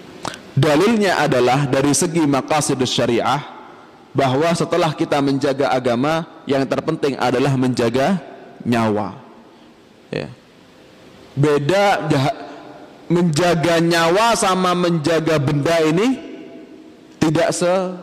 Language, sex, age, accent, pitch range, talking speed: Indonesian, male, 20-39, native, 135-180 Hz, 80 wpm